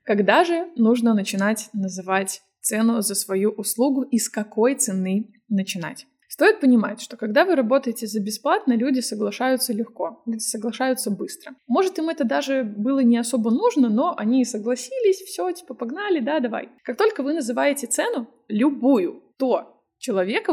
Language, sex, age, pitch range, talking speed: Russian, female, 20-39, 220-275 Hz, 150 wpm